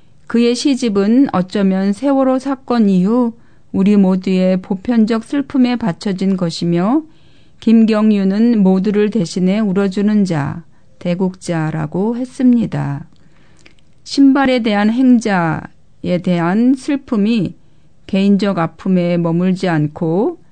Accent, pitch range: native, 185-240 Hz